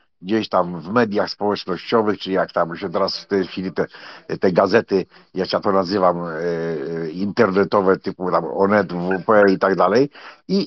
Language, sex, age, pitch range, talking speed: Polish, male, 60-79, 100-125 Hz, 170 wpm